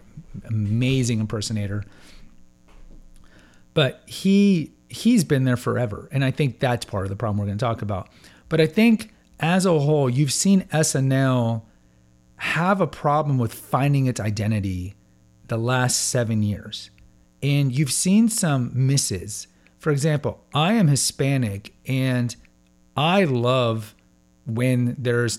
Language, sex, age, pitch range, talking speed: English, male, 40-59, 105-150 Hz, 130 wpm